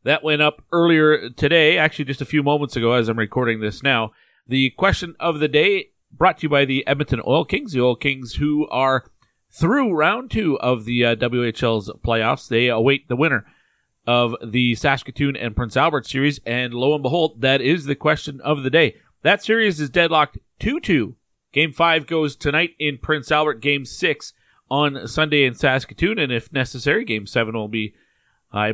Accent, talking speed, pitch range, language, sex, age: American, 190 wpm, 120-155 Hz, English, male, 40-59